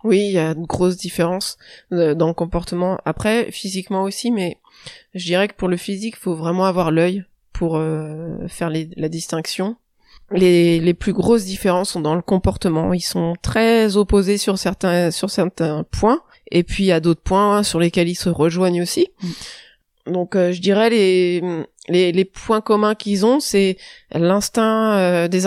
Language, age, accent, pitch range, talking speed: French, 20-39, French, 175-205 Hz, 185 wpm